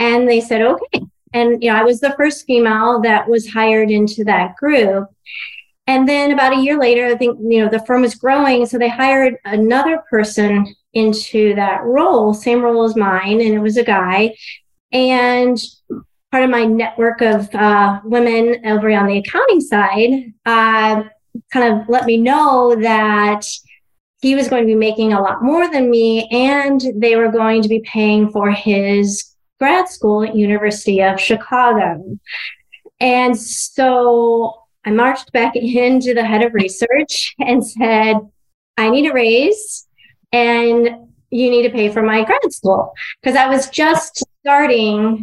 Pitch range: 215-255 Hz